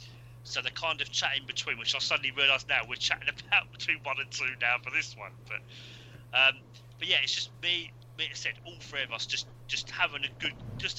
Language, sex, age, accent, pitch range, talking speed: English, male, 30-49, British, 120-130 Hz, 230 wpm